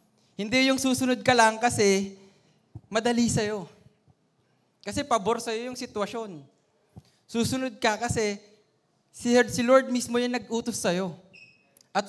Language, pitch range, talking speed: Filipino, 155-220 Hz, 115 wpm